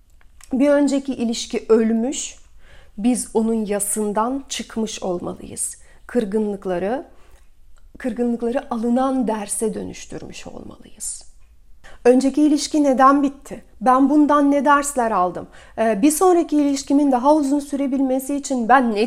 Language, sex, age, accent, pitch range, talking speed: Turkish, female, 40-59, native, 205-270 Hz, 105 wpm